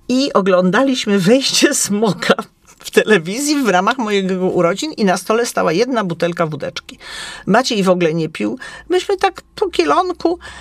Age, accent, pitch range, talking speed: 40-59, native, 175-235 Hz, 145 wpm